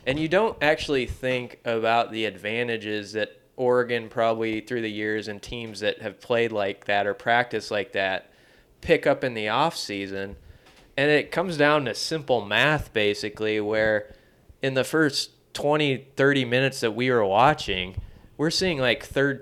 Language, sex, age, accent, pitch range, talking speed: English, male, 20-39, American, 110-135 Hz, 165 wpm